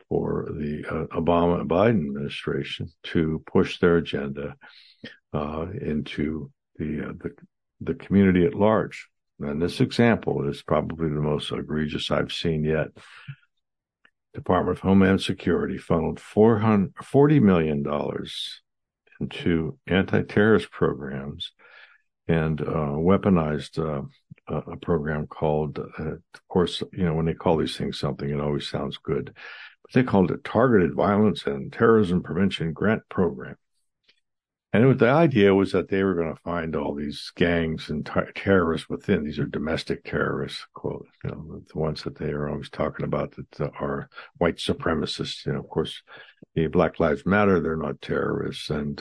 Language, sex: English, male